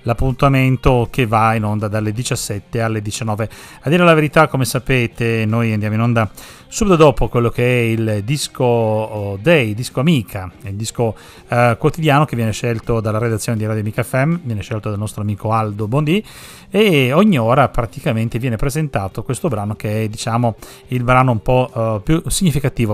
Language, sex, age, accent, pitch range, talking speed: Italian, male, 30-49, native, 110-130 Hz, 175 wpm